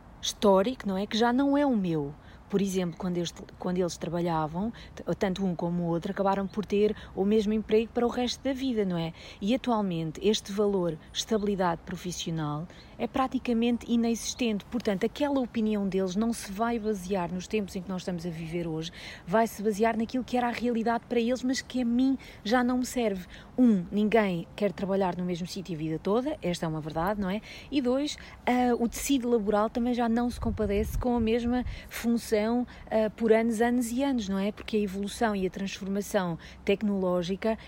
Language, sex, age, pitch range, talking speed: English, female, 40-59, 195-235 Hz, 190 wpm